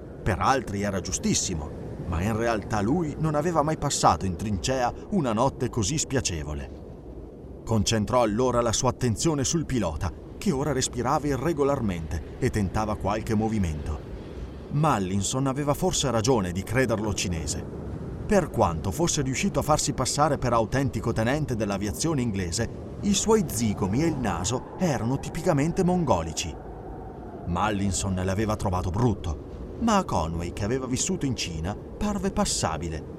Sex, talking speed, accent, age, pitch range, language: male, 135 wpm, native, 30-49, 95-135 Hz, Italian